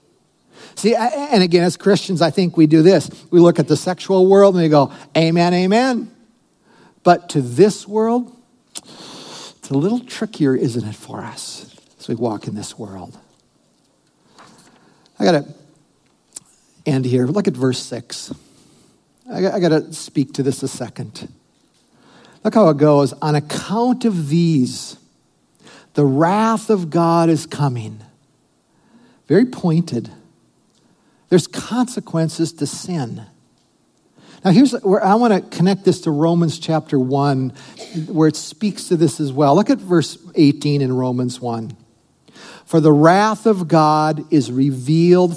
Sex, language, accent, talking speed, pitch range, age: male, English, American, 140 wpm, 140-190 Hz, 60-79